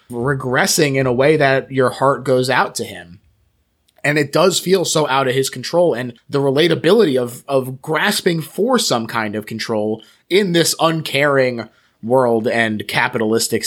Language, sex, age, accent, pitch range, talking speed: English, male, 20-39, American, 105-140 Hz, 160 wpm